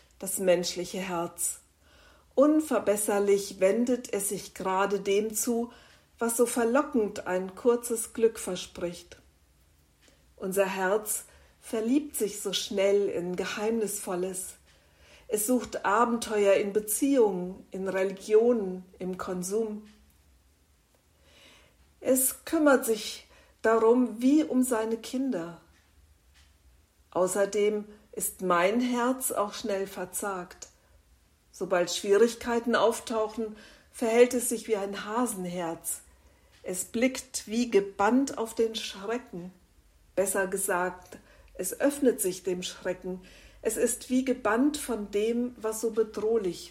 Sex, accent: female, German